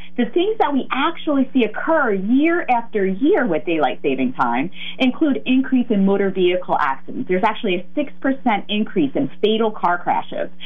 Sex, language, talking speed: female, English, 165 wpm